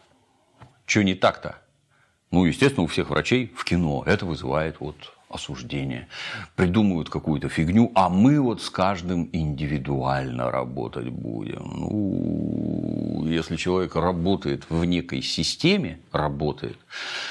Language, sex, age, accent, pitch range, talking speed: Russian, male, 40-59, native, 80-110 Hz, 115 wpm